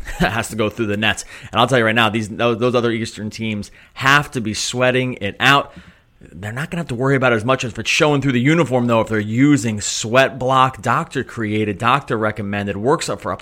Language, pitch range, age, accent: English, 110-130 Hz, 30-49, American